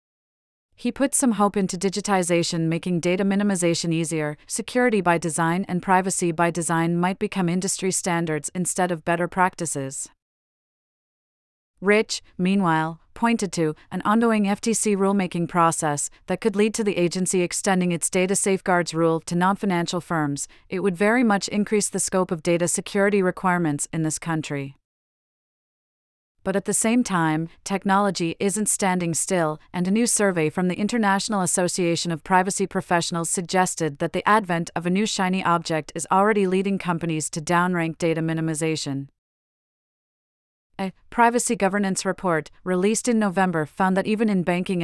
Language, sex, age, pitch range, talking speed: English, female, 40-59, 170-200 Hz, 150 wpm